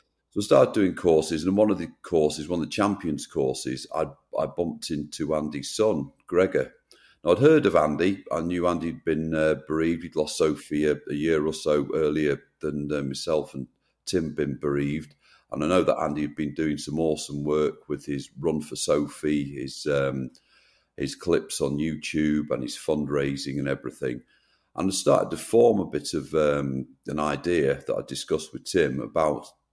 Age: 40-59